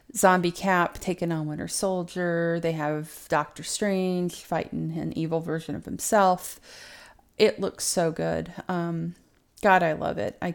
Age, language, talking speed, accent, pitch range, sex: 30-49, English, 150 wpm, American, 160-200 Hz, female